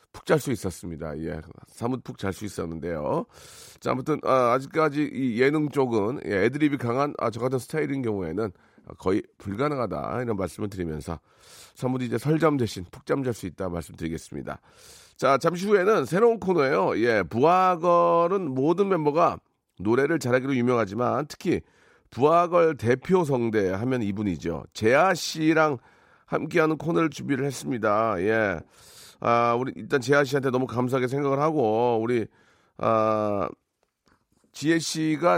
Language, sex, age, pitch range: Korean, male, 40-59, 115-155 Hz